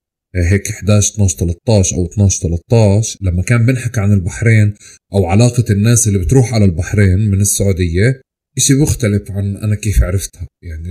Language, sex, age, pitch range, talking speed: Arabic, male, 30-49, 100-120 Hz, 155 wpm